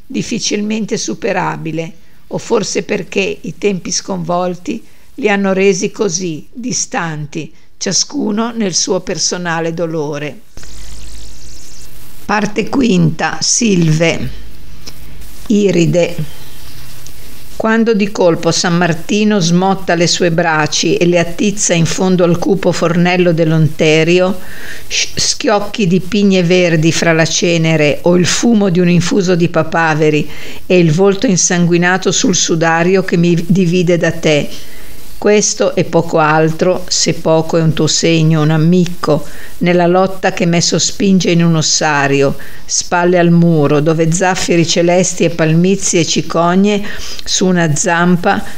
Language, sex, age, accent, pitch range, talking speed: Italian, female, 50-69, native, 160-190 Hz, 120 wpm